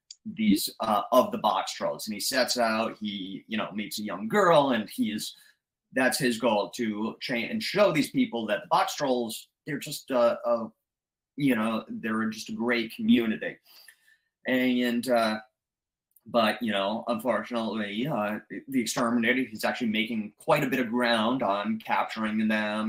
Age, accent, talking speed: 30-49, American, 170 wpm